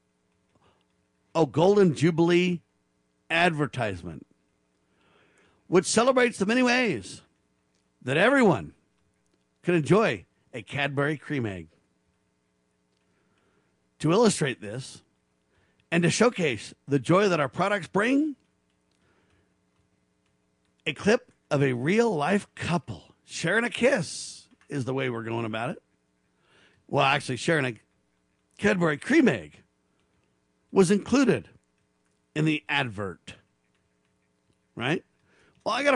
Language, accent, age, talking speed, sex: English, American, 50-69, 105 wpm, male